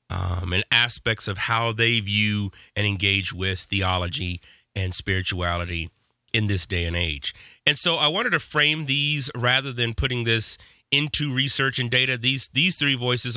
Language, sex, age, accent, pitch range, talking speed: English, male, 30-49, American, 95-120 Hz, 165 wpm